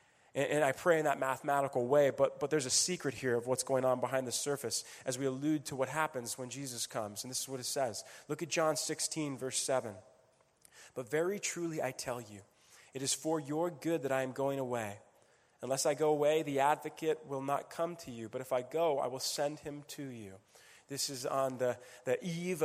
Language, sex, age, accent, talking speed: English, male, 20-39, American, 225 wpm